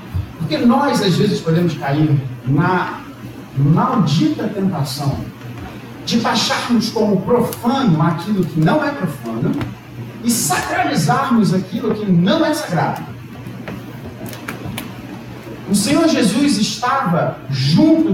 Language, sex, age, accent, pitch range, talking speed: Portuguese, male, 40-59, Brazilian, 155-235 Hz, 100 wpm